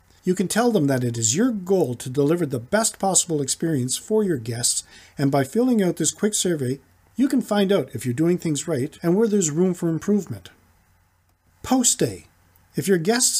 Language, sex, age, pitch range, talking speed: English, male, 40-59, 115-180 Hz, 200 wpm